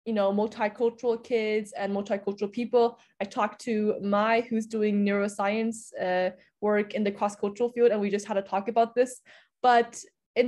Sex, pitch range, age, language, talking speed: female, 205-240 Hz, 20-39, English, 170 wpm